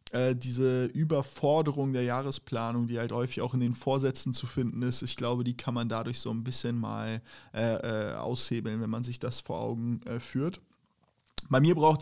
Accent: German